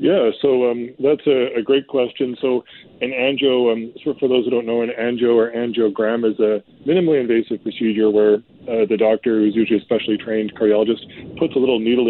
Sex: male